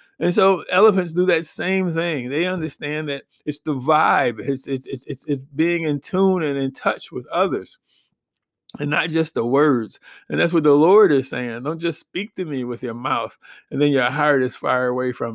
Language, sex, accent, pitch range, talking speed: English, male, American, 130-165 Hz, 205 wpm